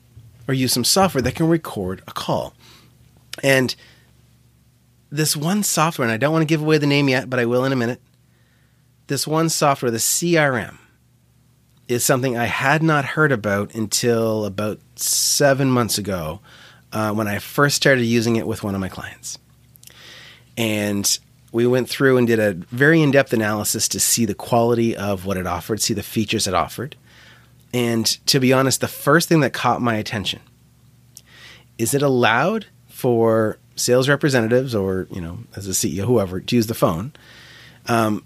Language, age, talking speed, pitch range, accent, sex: English, 30-49, 175 wpm, 110-135 Hz, American, male